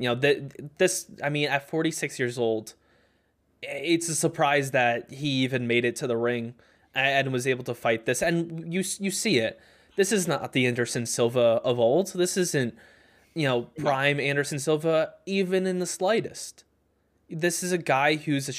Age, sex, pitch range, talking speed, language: 20-39, male, 125-160 Hz, 180 wpm, English